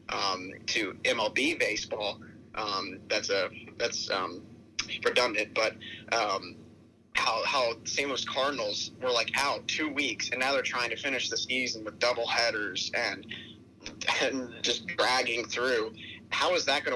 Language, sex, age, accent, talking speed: English, male, 30-49, American, 150 wpm